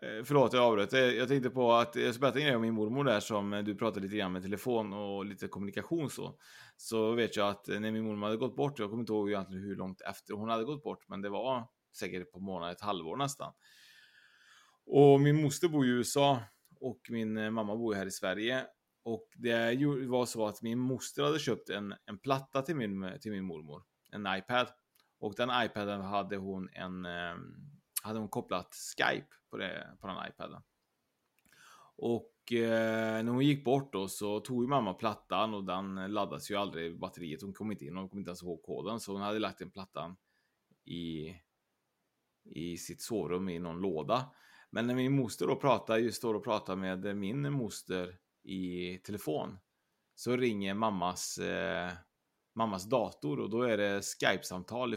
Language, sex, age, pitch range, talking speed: Swedish, male, 20-39, 95-120 Hz, 185 wpm